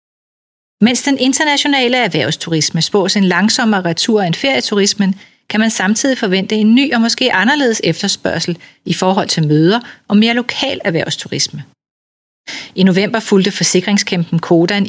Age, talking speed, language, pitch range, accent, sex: 40-59, 135 wpm, Danish, 175-225 Hz, native, female